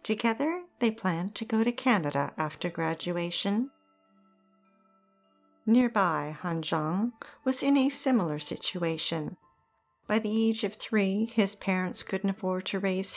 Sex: female